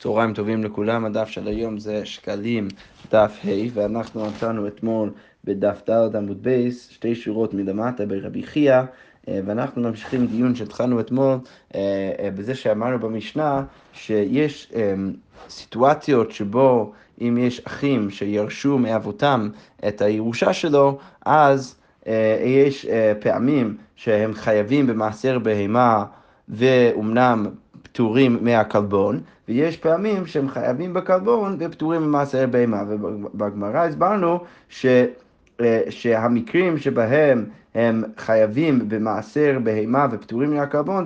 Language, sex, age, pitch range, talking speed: Hebrew, male, 30-49, 110-140 Hz, 100 wpm